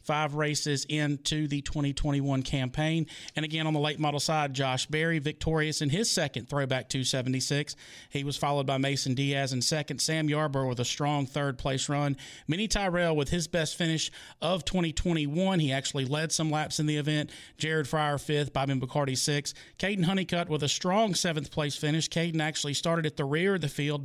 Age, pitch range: 40-59, 140-165 Hz